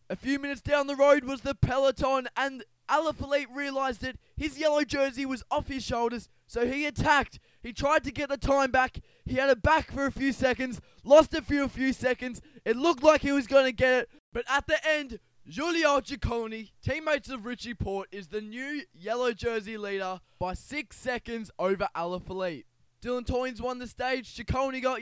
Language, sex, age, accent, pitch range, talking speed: English, male, 10-29, Australian, 205-265 Hz, 195 wpm